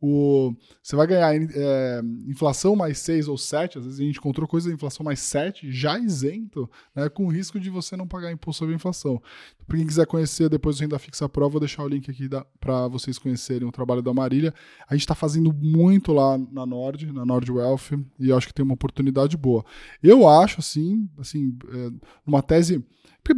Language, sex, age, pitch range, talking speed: English, male, 10-29, 125-160 Hz, 215 wpm